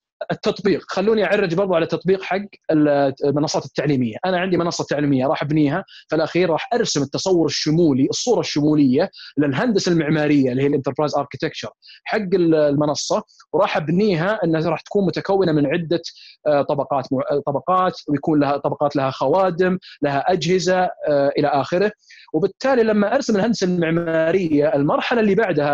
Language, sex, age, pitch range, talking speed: Arabic, male, 30-49, 145-190 Hz, 135 wpm